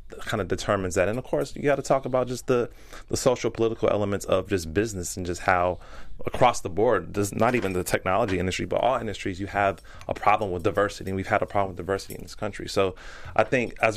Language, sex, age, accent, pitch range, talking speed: English, male, 30-49, American, 95-115 Hz, 235 wpm